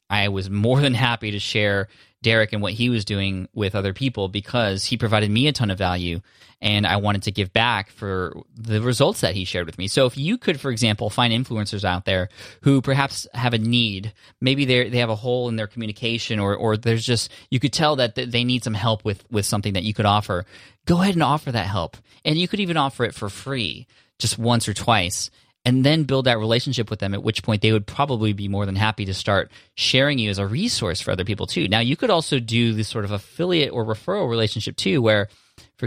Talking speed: 235 wpm